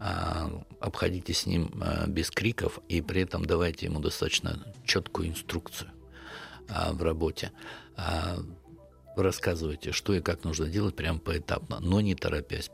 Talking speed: 125 wpm